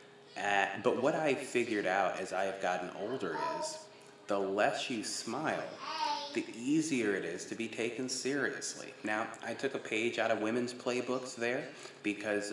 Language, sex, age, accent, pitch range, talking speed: English, male, 30-49, American, 100-120 Hz, 170 wpm